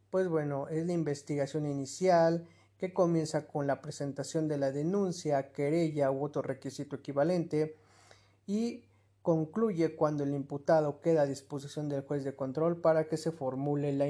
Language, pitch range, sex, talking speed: Spanish, 140-170 Hz, male, 155 wpm